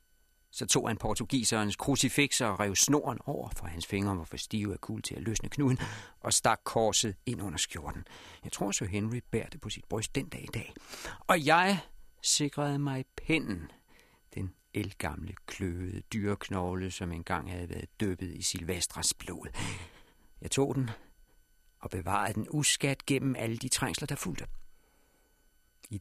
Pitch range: 85-120 Hz